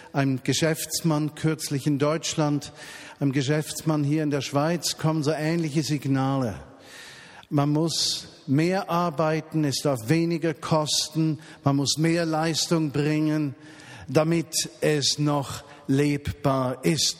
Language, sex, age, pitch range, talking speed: German, male, 50-69, 140-170 Hz, 115 wpm